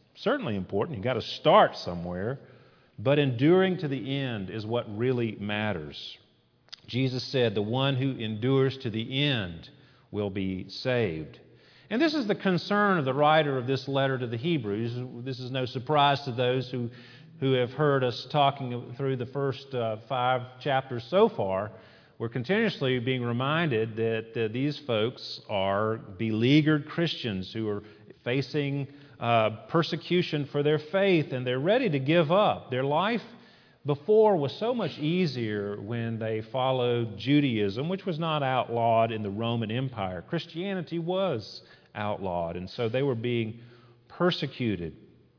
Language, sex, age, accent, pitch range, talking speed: English, male, 40-59, American, 115-150 Hz, 150 wpm